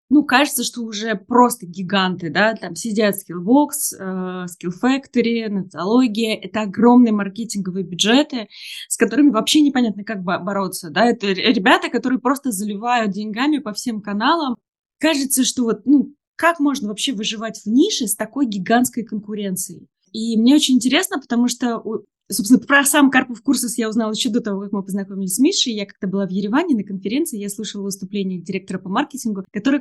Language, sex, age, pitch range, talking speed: Russian, female, 20-39, 200-250 Hz, 165 wpm